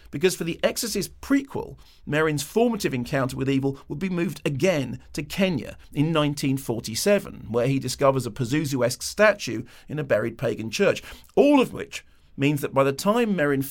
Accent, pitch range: British, 130-165 Hz